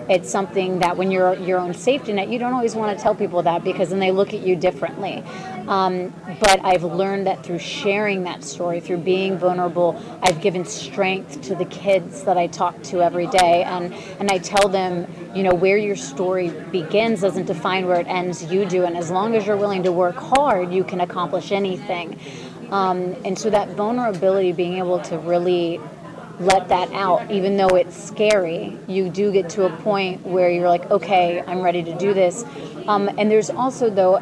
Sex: female